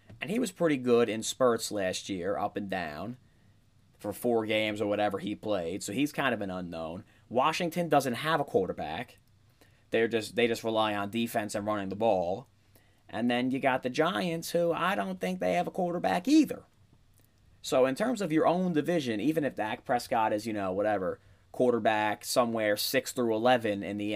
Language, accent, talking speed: English, American, 195 wpm